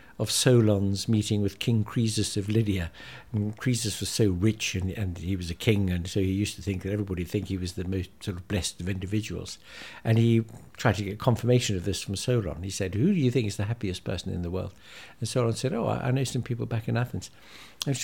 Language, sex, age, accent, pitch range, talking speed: English, male, 60-79, British, 95-115 Hz, 245 wpm